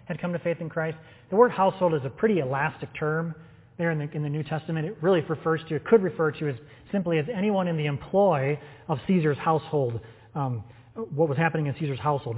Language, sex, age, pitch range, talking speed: English, male, 30-49, 125-165 Hz, 225 wpm